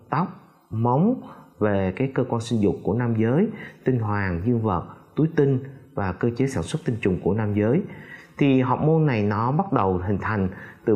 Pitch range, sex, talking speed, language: 105-145 Hz, male, 205 wpm, Vietnamese